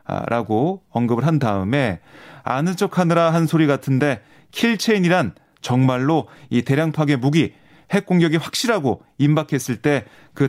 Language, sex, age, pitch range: Korean, male, 30-49, 130-180 Hz